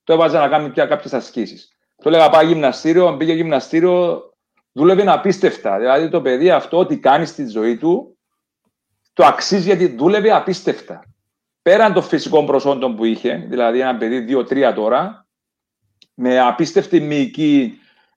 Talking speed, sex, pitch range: 145 wpm, male, 130-170 Hz